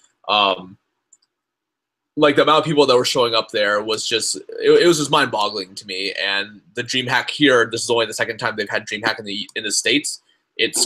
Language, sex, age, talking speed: English, male, 20-39, 220 wpm